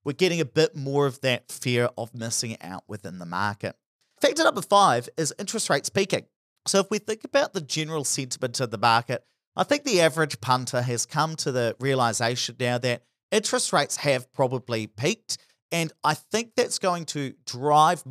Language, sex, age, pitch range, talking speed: English, male, 40-59, 120-165 Hz, 185 wpm